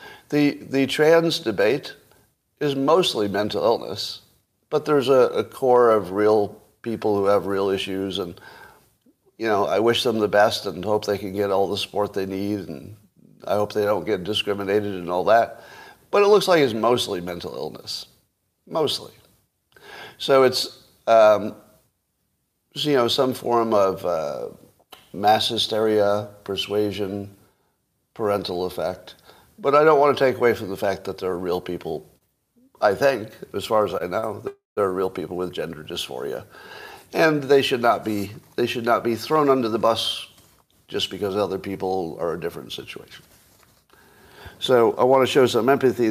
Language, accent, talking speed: English, American, 170 wpm